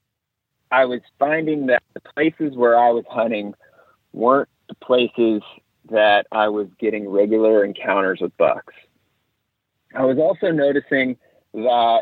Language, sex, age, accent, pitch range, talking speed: English, male, 30-49, American, 110-140 Hz, 130 wpm